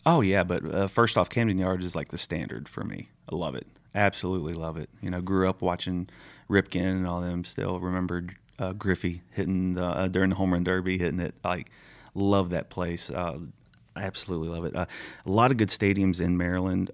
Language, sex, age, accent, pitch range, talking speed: English, male, 30-49, American, 85-95 Hz, 205 wpm